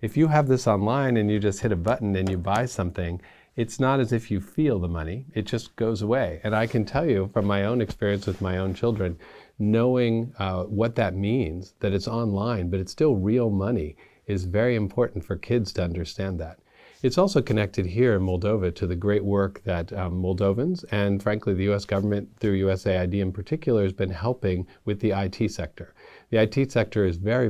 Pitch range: 95-115 Hz